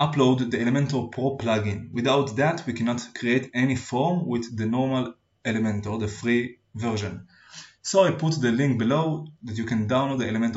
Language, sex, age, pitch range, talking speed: Hebrew, male, 20-39, 115-145 Hz, 185 wpm